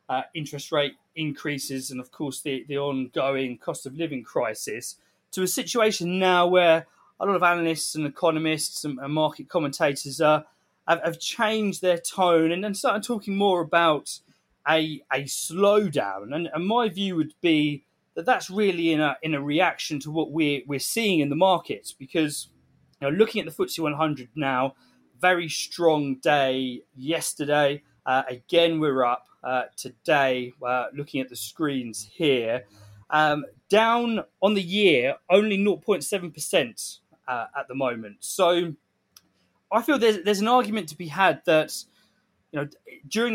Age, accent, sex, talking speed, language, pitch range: 20-39, British, male, 160 wpm, English, 135-180 Hz